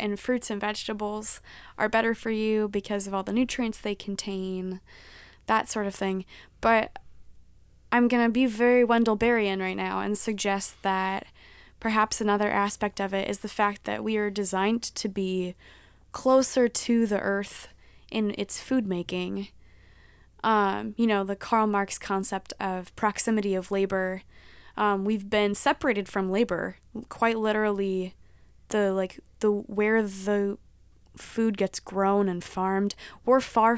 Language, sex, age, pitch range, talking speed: English, female, 20-39, 190-225 Hz, 150 wpm